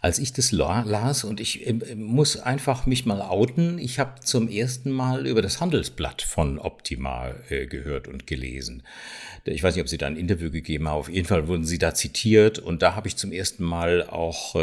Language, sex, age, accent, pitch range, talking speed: German, male, 60-79, German, 80-110 Hz, 200 wpm